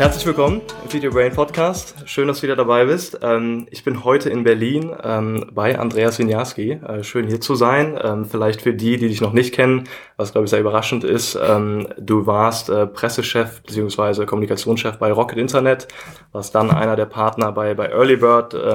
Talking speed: 175 wpm